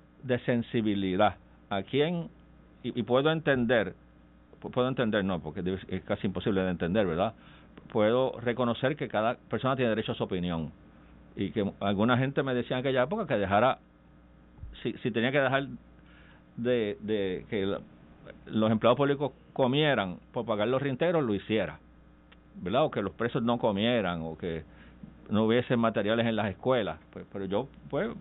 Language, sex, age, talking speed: Spanish, male, 50-69, 165 wpm